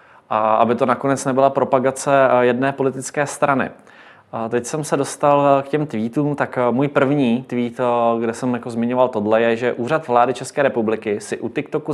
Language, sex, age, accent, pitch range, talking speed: Czech, male, 20-39, native, 110-135 Hz, 170 wpm